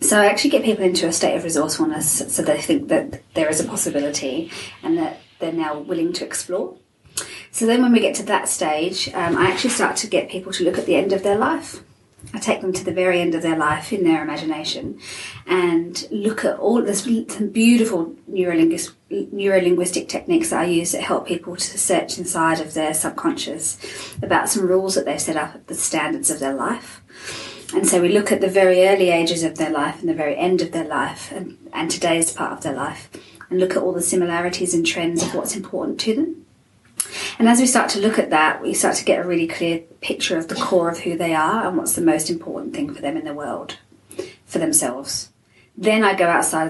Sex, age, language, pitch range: female, 30-49, English, 165-225 Hz